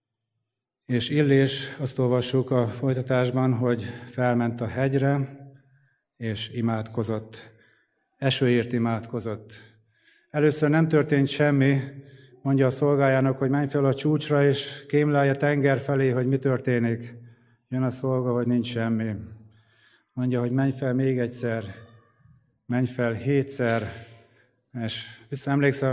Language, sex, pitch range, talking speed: Hungarian, male, 120-135 Hz, 115 wpm